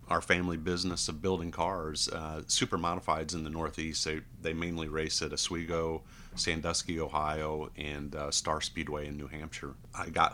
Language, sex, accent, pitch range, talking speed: English, male, American, 75-80 Hz, 170 wpm